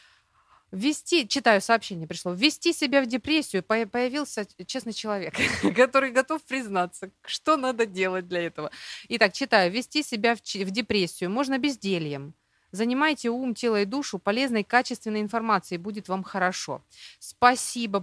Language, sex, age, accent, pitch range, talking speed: Ukrainian, female, 30-49, native, 175-240 Hz, 130 wpm